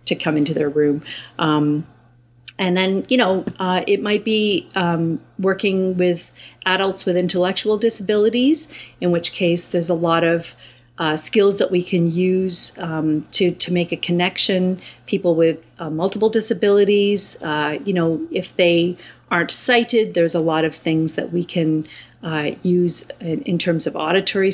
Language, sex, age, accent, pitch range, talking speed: English, female, 40-59, American, 160-190 Hz, 165 wpm